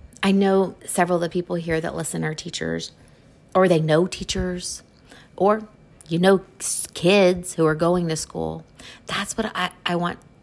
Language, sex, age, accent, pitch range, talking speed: English, female, 40-59, American, 125-180 Hz, 165 wpm